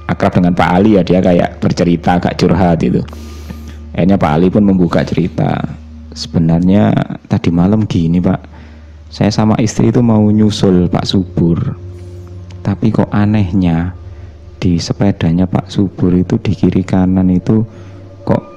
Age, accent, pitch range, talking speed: 20-39, native, 85-100 Hz, 140 wpm